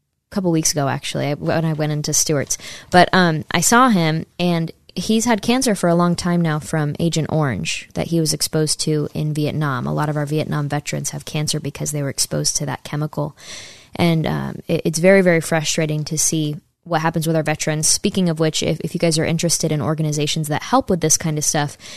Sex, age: female, 20-39